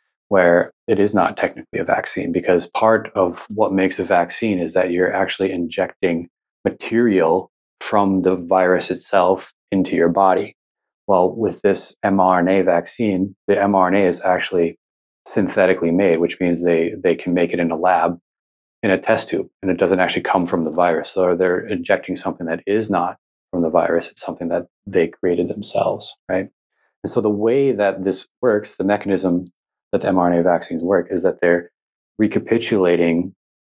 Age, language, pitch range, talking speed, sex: 30-49, English, 90-95 Hz, 170 wpm, male